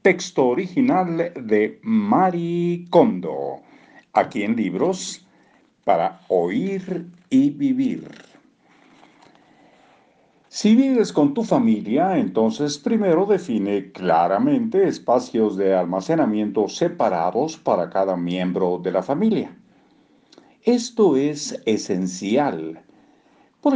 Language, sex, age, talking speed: Spanish, male, 50-69, 90 wpm